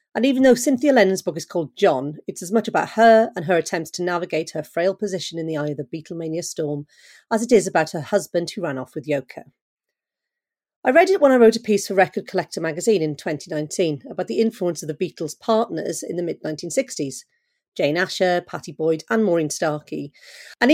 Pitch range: 155-225 Hz